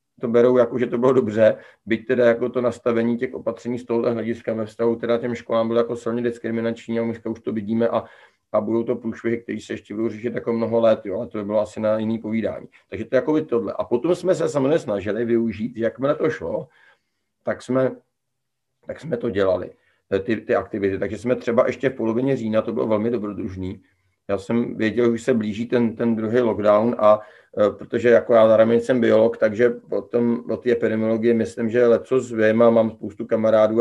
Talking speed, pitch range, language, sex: 215 wpm, 110-120 Hz, Czech, male